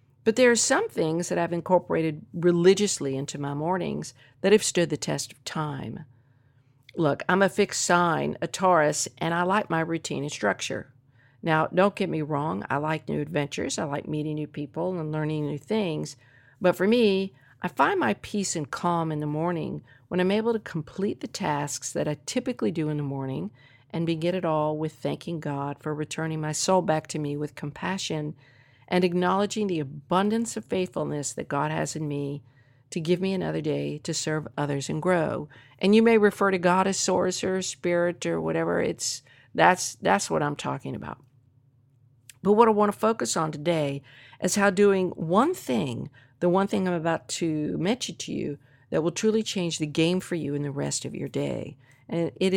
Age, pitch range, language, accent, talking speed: 50-69, 145-185 Hz, English, American, 195 wpm